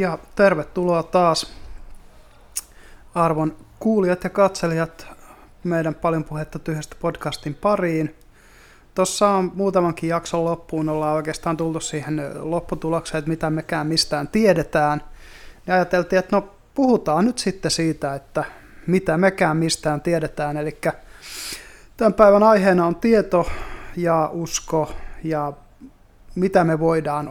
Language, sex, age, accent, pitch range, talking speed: Finnish, male, 30-49, native, 155-185 Hz, 115 wpm